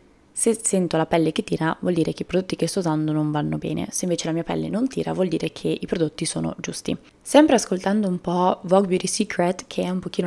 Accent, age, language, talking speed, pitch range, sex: native, 20-39, Italian, 245 wpm, 170-195 Hz, female